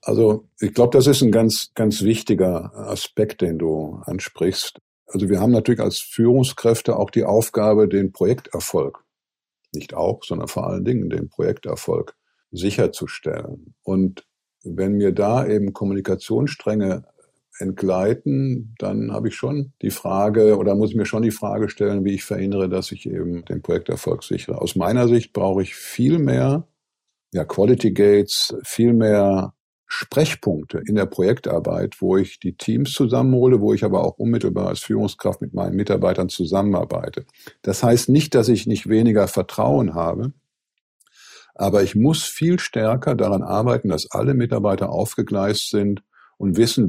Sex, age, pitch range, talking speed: male, 50-69, 100-120 Hz, 150 wpm